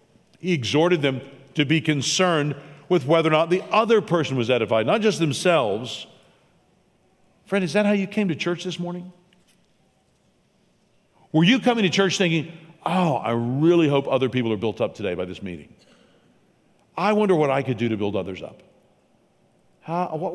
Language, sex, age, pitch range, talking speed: English, male, 50-69, 120-170 Hz, 170 wpm